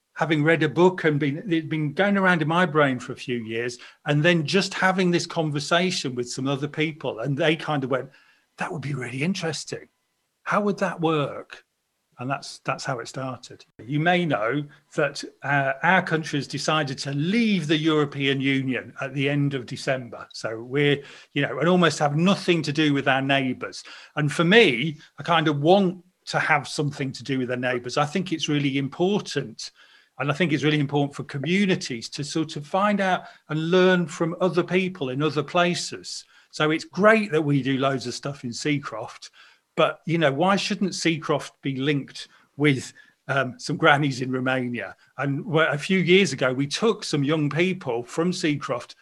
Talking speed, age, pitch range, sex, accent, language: 190 wpm, 40-59, 140-175 Hz, male, British, English